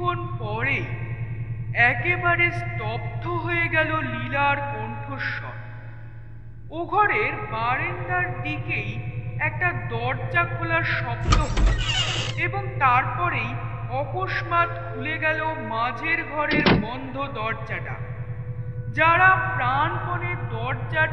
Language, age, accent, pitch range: Bengali, 50-69, native, 115-125 Hz